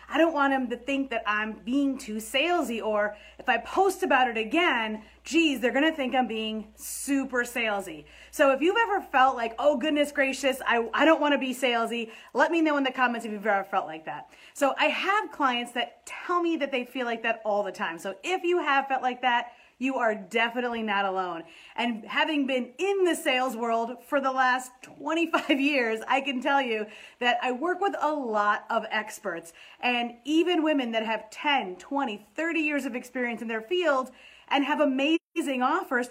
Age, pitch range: 30-49, 230-305 Hz